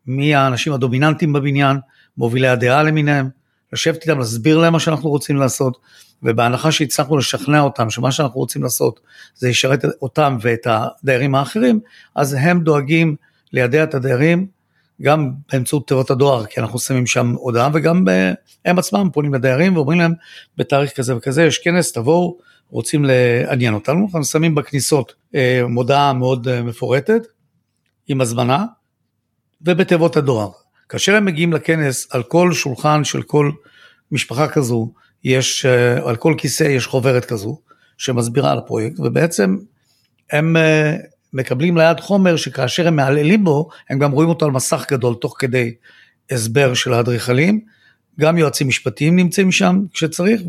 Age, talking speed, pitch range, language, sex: 50-69, 135 wpm, 125-160 Hz, Hebrew, male